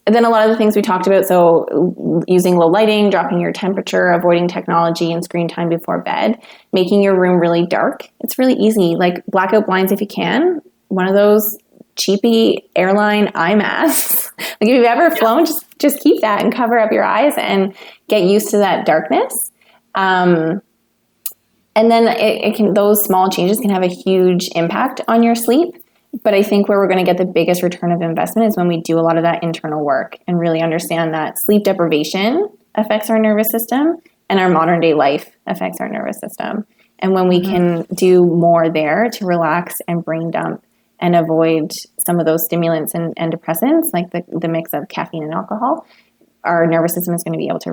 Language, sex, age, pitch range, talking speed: English, female, 20-39, 170-215 Hz, 205 wpm